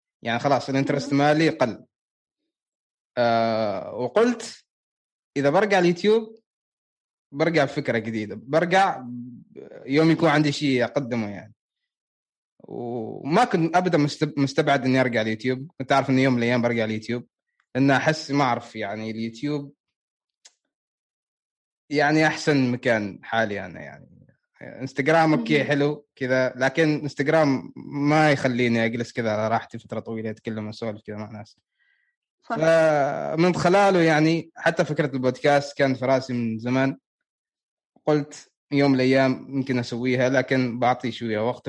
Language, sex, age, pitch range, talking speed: Arabic, male, 20-39, 120-155 Hz, 120 wpm